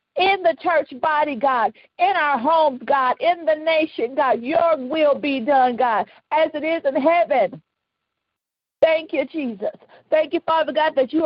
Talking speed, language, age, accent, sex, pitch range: 170 wpm, English, 50-69, American, female, 255-315 Hz